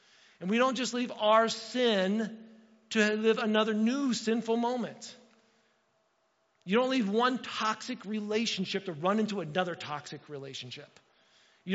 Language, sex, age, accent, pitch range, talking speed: English, male, 50-69, American, 200-230 Hz, 135 wpm